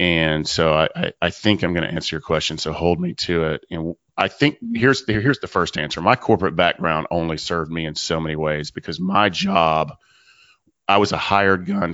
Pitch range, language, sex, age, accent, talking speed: 80-95 Hz, English, male, 30-49, American, 215 wpm